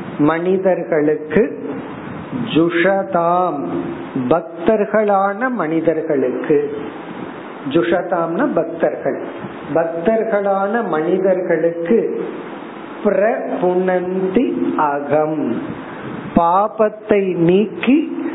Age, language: 50-69, Tamil